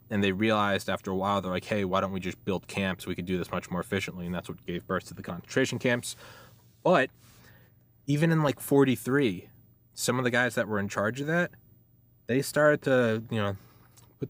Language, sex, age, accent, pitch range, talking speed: English, male, 20-39, American, 105-135 Hz, 220 wpm